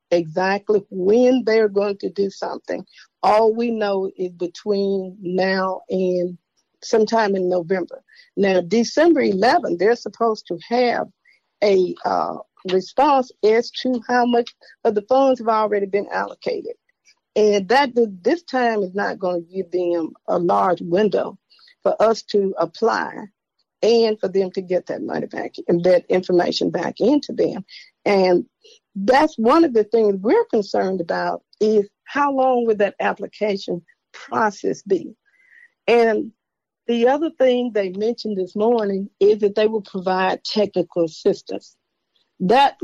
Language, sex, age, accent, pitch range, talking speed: English, female, 50-69, American, 190-245 Hz, 145 wpm